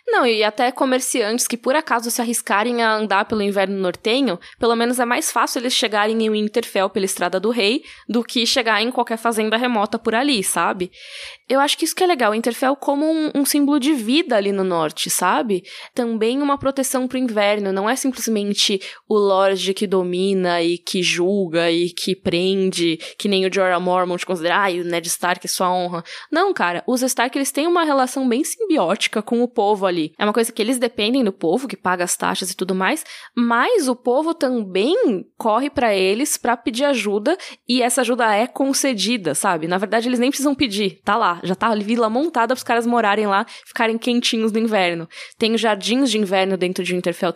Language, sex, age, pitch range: Portuguese, female, 10-29, 195-255 Hz